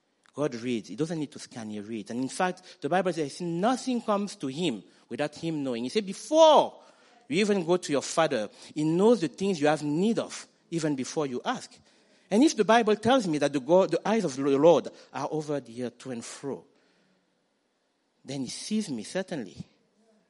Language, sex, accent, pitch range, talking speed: English, male, French, 150-220 Hz, 205 wpm